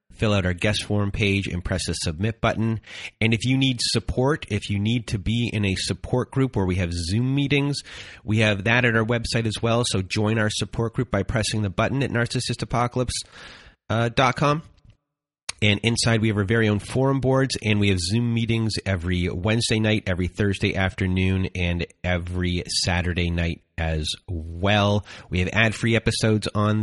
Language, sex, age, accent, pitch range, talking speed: English, male, 30-49, American, 95-115 Hz, 180 wpm